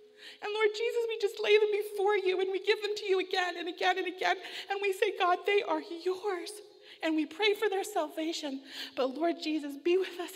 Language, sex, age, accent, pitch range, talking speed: English, female, 40-59, American, 245-320 Hz, 225 wpm